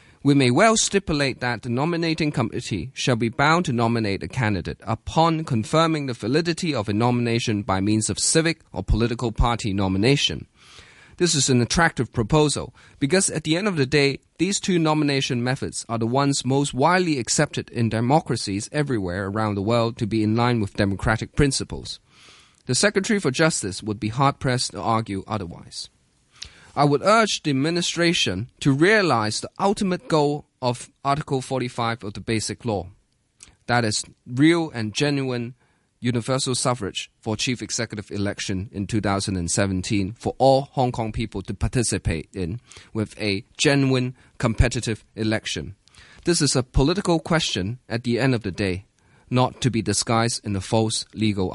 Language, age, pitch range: English, 20-39, 105-140 Hz